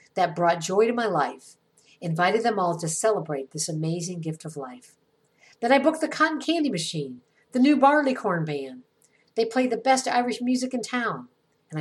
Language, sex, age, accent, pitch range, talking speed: English, female, 50-69, American, 155-245 Hz, 185 wpm